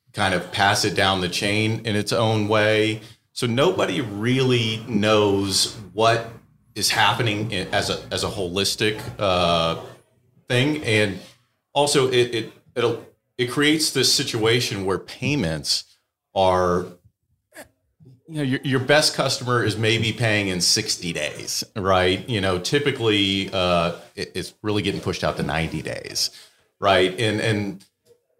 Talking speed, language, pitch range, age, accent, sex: 140 wpm, English, 95-115 Hz, 40-59, American, male